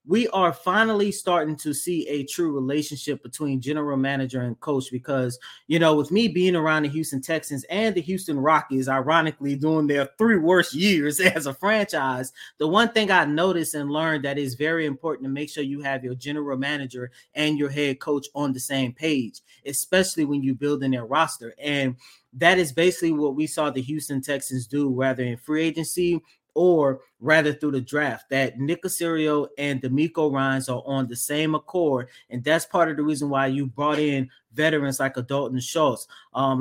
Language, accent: English, American